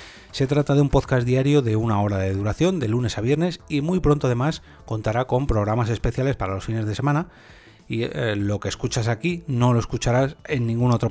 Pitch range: 105-135 Hz